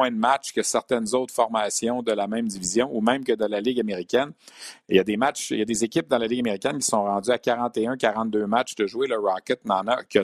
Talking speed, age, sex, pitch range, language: 265 wpm, 50-69, male, 110-125 Hz, French